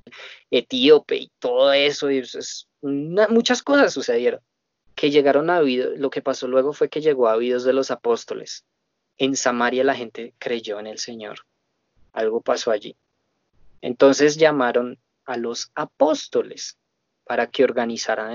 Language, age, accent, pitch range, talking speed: Spanish, 20-39, Colombian, 125-170 Hz, 150 wpm